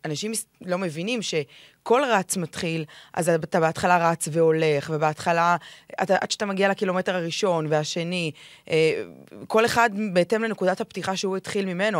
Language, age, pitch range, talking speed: Hebrew, 20-39, 165-215 Hz, 130 wpm